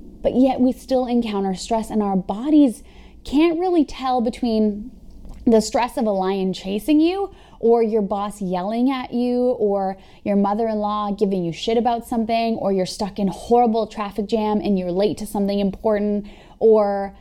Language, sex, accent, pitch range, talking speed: English, female, American, 190-230 Hz, 165 wpm